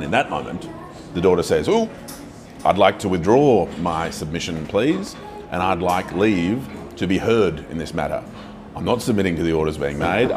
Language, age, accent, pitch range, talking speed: English, 30-49, Australian, 80-95 Hz, 190 wpm